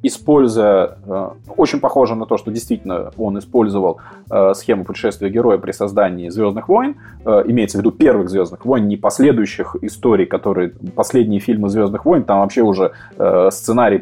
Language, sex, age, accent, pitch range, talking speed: Russian, male, 20-39, native, 105-140 Hz, 145 wpm